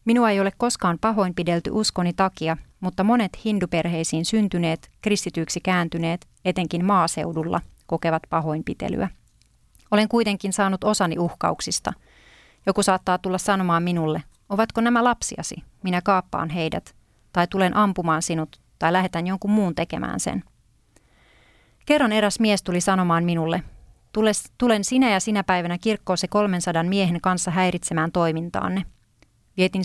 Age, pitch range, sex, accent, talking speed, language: 30-49, 170-205 Hz, female, native, 125 wpm, Finnish